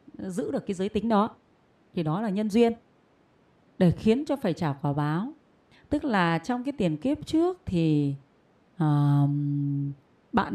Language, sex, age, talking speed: Vietnamese, female, 30-49, 160 wpm